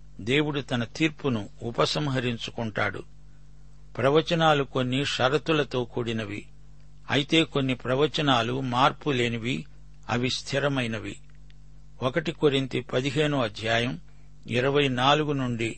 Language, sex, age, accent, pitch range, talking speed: Telugu, male, 60-79, native, 125-145 Hz, 70 wpm